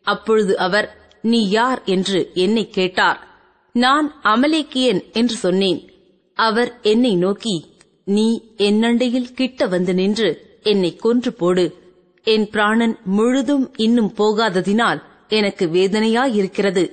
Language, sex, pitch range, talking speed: Tamil, female, 200-250 Hz, 105 wpm